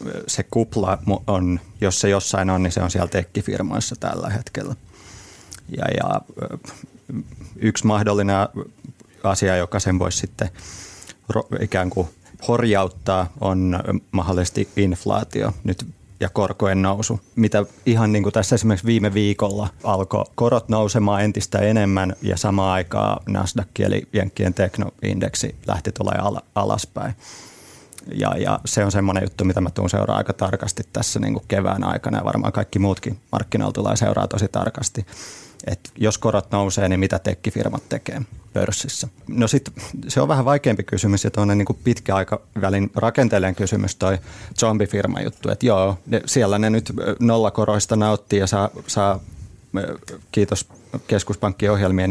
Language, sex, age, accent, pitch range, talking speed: Finnish, male, 30-49, native, 95-110 Hz, 135 wpm